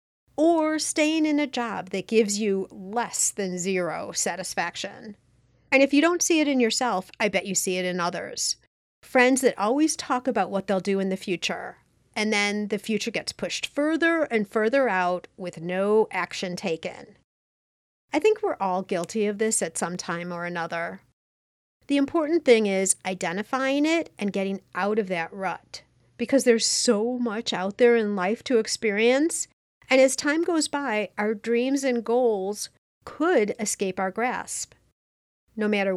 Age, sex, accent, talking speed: 40-59, female, American, 170 wpm